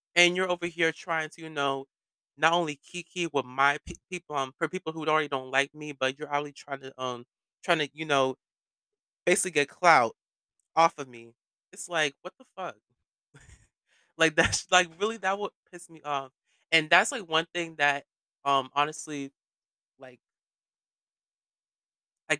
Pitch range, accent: 135-165 Hz, American